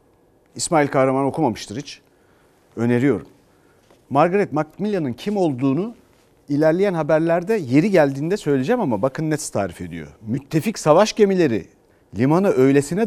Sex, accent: male, native